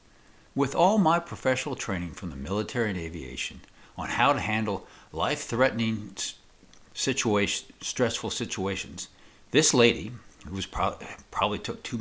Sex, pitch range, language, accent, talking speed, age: male, 95-135 Hz, English, American, 115 wpm, 60-79